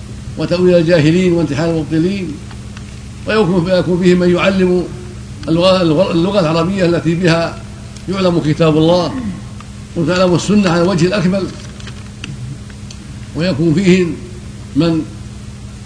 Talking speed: 90 wpm